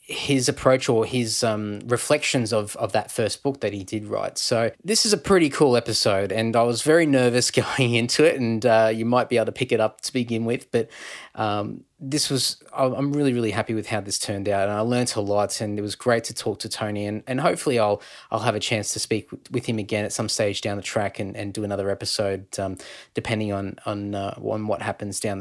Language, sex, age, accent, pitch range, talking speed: English, male, 20-39, Australian, 105-125 Hz, 240 wpm